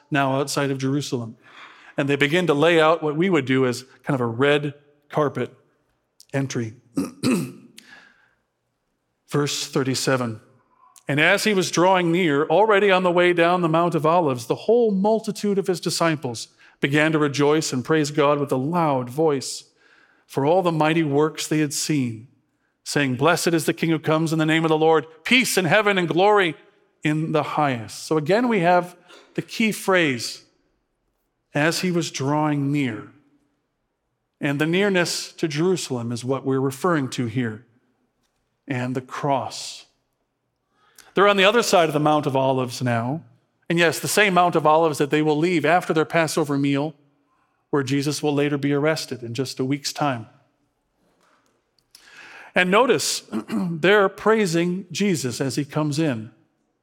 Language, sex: English, male